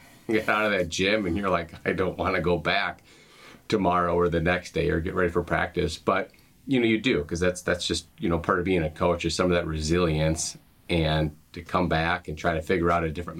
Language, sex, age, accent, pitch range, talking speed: English, male, 30-49, American, 80-90 Hz, 245 wpm